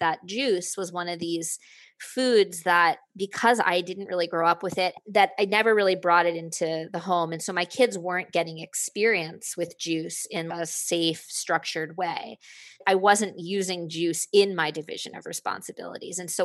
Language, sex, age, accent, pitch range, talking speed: English, female, 20-39, American, 170-220 Hz, 180 wpm